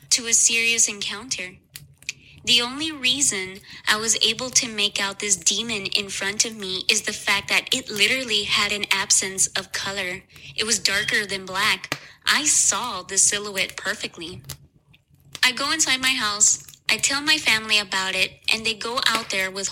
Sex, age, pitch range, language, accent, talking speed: female, 20-39, 195-235 Hz, English, American, 175 wpm